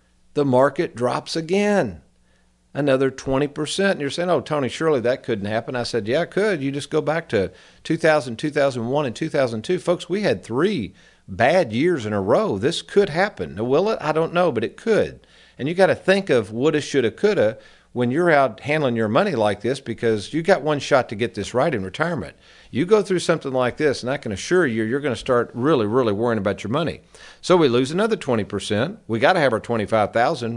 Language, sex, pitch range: English, male, 110-155 Hz